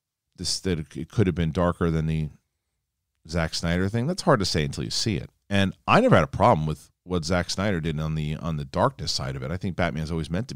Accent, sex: American, male